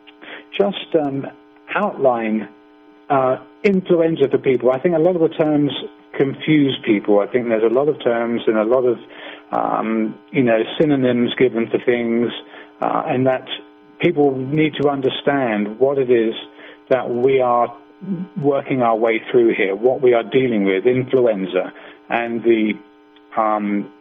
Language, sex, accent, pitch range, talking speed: English, male, British, 105-135 Hz, 150 wpm